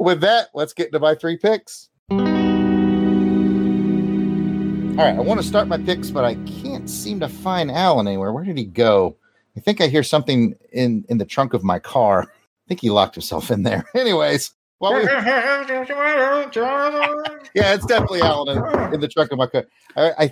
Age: 40-59